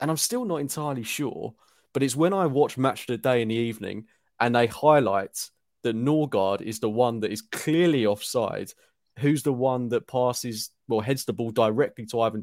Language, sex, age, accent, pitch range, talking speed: English, male, 30-49, British, 110-140 Hz, 205 wpm